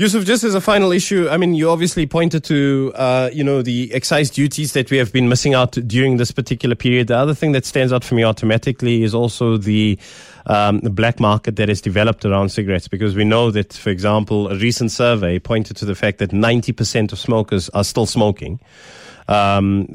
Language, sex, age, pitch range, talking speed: English, male, 20-39, 105-125 Hz, 215 wpm